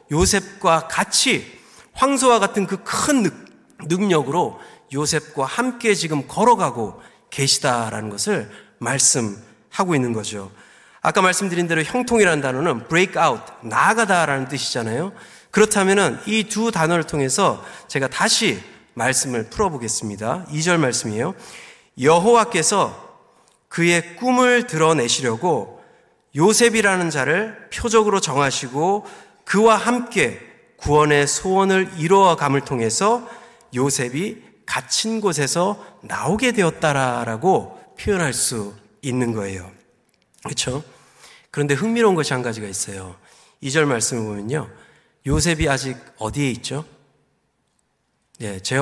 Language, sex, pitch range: Korean, male, 120-195 Hz